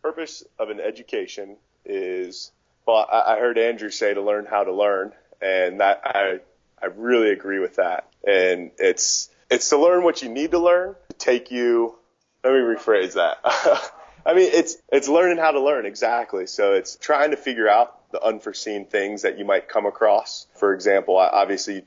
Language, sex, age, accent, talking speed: English, male, 30-49, American, 185 wpm